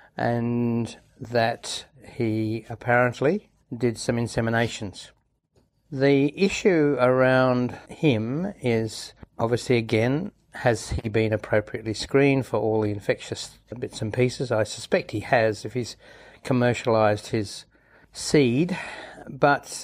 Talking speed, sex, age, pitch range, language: 110 wpm, male, 60-79, 115-135 Hz, English